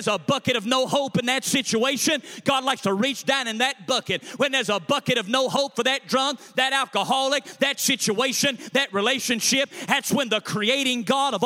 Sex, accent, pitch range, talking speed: male, American, 230-275 Hz, 200 wpm